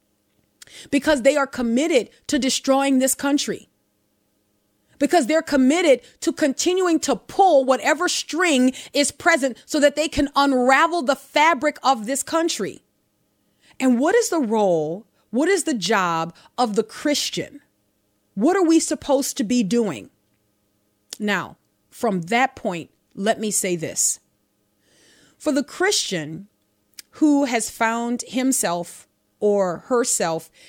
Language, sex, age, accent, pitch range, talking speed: English, female, 30-49, American, 200-275 Hz, 125 wpm